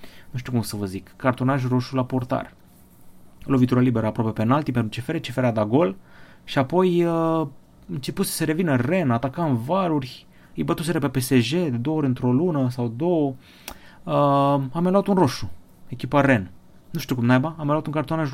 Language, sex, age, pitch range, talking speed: Romanian, male, 30-49, 115-155 Hz, 185 wpm